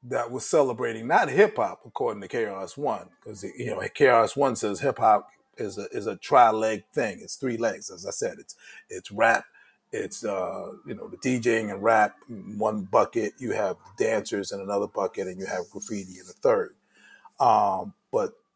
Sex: male